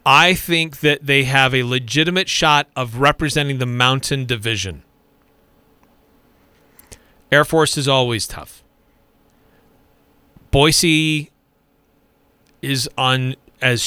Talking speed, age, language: 95 wpm, 40-59, English